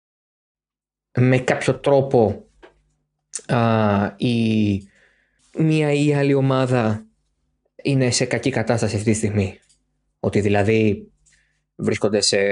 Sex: male